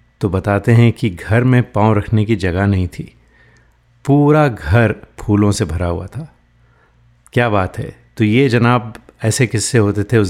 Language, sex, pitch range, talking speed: Hindi, male, 105-125 Hz, 175 wpm